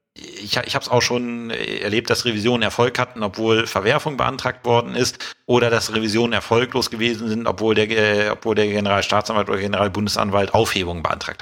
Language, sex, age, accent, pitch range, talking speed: German, male, 40-59, German, 100-120 Hz, 175 wpm